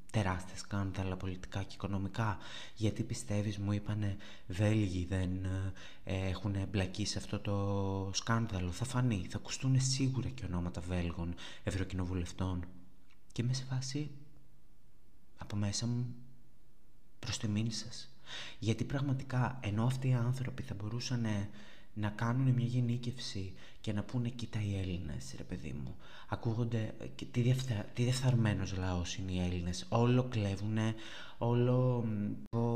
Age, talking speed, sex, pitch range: 20-39, 125 wpm, male, 100-120 Hz